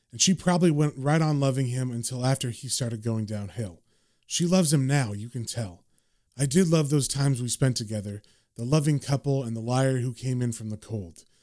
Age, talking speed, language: 30-49, 215 wpm, English